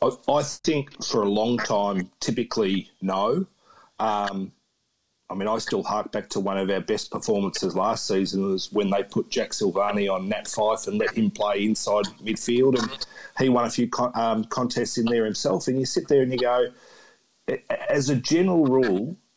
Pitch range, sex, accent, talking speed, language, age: 105-130 Hz, male, Australian, 185 wpm, English, 40-59